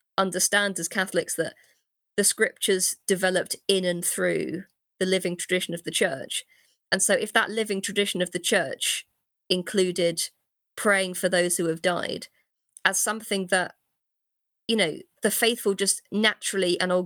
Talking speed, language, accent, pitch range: 150 wpm, English, British, 175-200 Hz